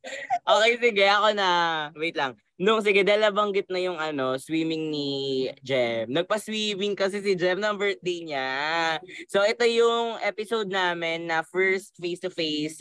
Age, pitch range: 20-39, 140-200 Hz